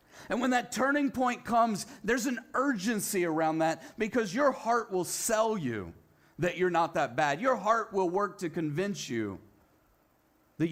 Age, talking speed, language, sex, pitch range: 40-59, 170 wpm, English, male, 155-235 Hz